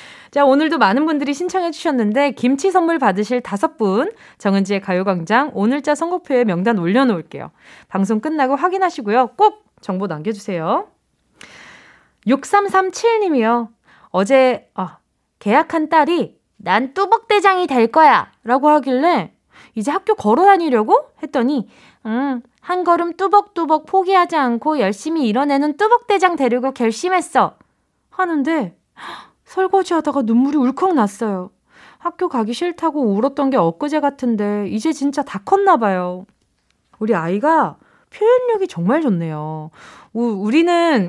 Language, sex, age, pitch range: Korean, female, 20-39, 210-325 Hz